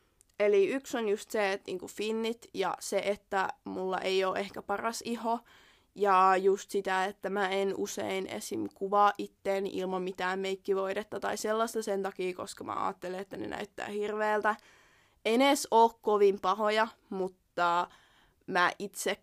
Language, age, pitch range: Finnish, 20-39, 190-215 Hz